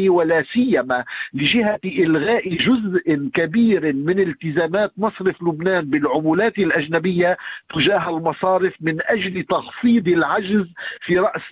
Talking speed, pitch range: 105 wpm, 170-215 Hz